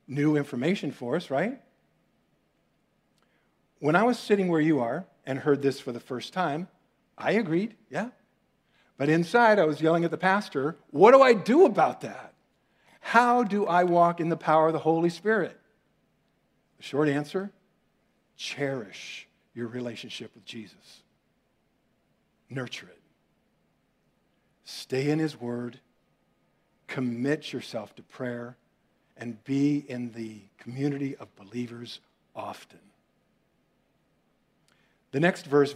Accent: American